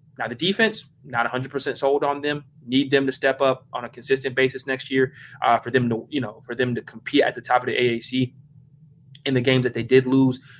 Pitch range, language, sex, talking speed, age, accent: 125-140 Hz, English, male, 240 wpm, 20-39, American